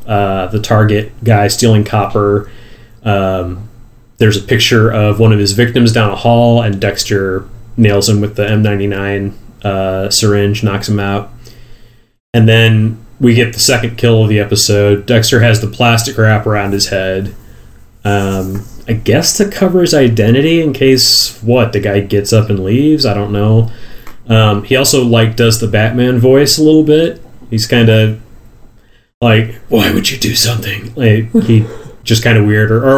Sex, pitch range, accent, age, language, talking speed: male, 105-120 Hz, American, 30-49, English, 170 wpm